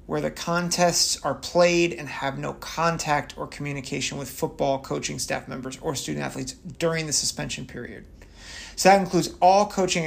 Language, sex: English, male